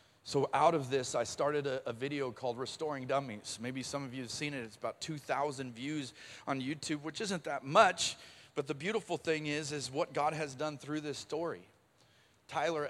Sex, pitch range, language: male, 120-150 Hz, English